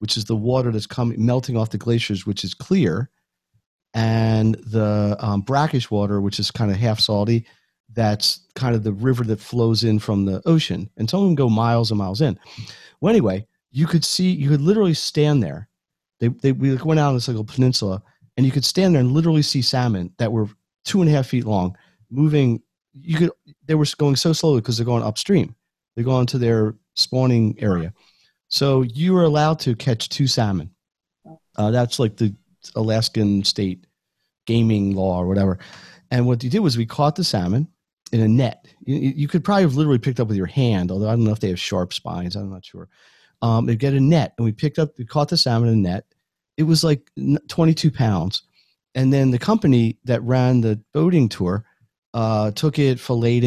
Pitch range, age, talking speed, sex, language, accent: 110-140 Hz, 40-59, 210 wpm, male, English, American